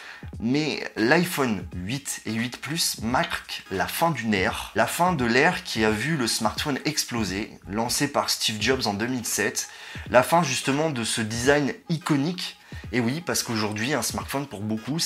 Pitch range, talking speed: 110-145 Hz, 165 wpm